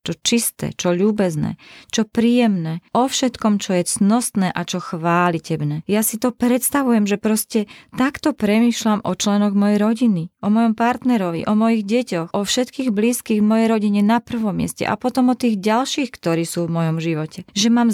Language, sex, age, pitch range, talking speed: Slovak, female, 30-49, 170-220 Hz, 175 wpm